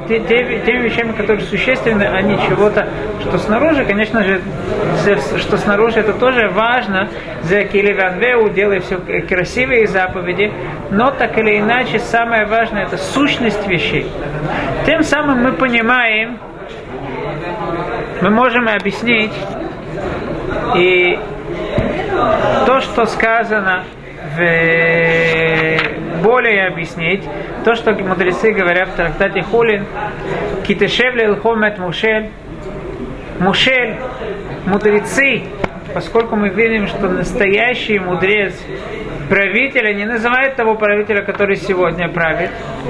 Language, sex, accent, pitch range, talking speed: Russian, male, native, 190-230 Hz, 95 wpm